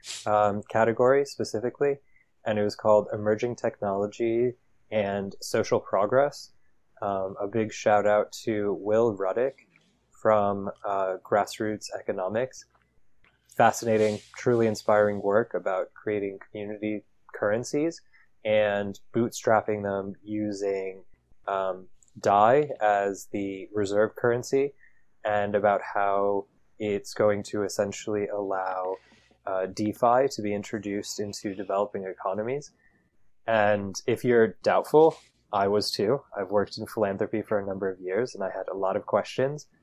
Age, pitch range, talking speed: 20-39, 100-115 Hz, 120 wpm